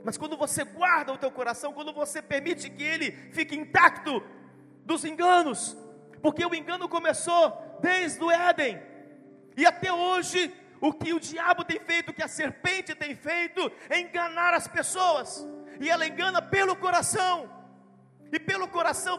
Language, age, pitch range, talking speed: Portuguese, 40-59, 305-360 Hz, 155 wpm